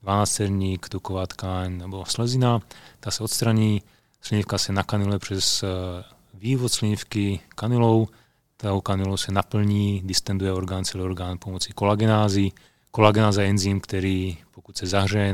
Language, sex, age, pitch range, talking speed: Czech, male, 30-49, 95-115 Hz, 115 wpm